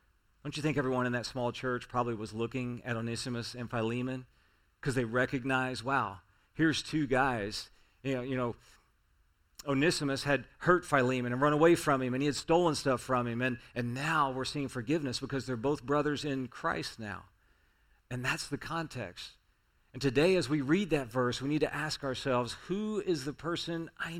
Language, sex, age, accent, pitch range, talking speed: English, male, 40-59, American, 115-140 Hz, 185 wpm